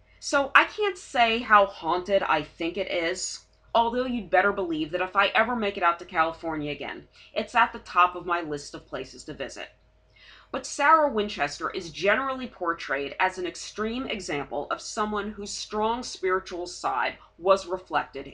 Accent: American